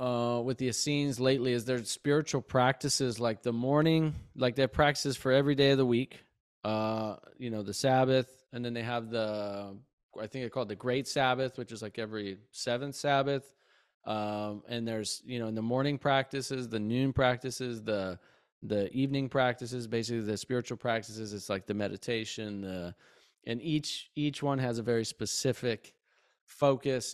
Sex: male